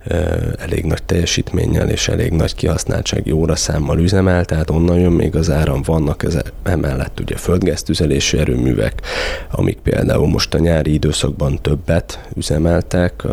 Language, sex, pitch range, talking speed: Hungarian, male, 75-85 Hz, 130 wpm